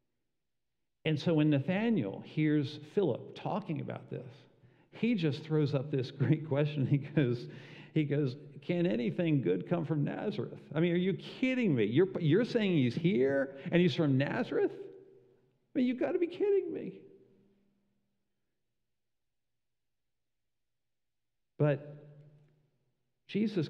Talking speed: 130 wpm